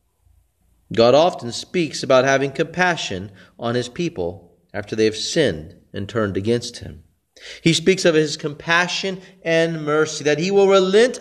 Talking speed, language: 150 wpm, English